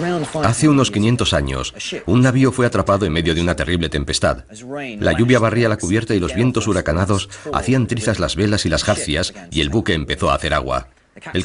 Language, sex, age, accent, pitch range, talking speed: Spanish, male, 50-69, Spanish, 85-115 Hz, 200 wpm